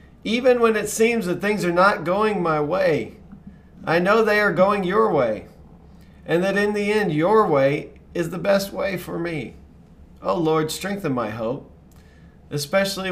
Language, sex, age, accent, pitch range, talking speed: English, male, 40-59, American, 125-155 Hz, 170 wpm